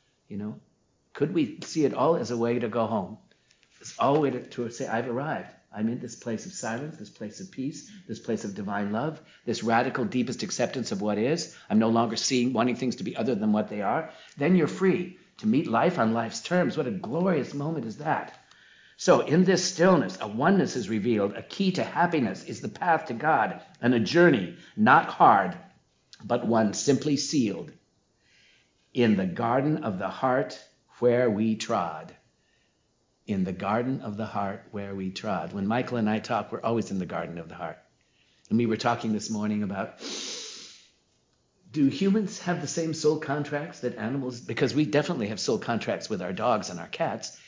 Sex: male